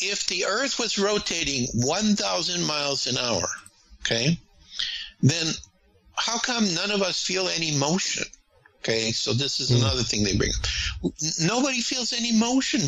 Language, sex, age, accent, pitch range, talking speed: English, male, 60-79, American, 125-200 Hz, 145 wpm